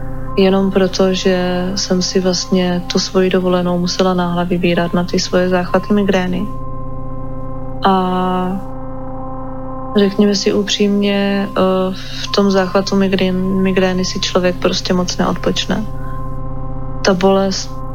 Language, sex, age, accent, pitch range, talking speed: Czech, female, 20-39, native, 130-190 Hz, 105 wpm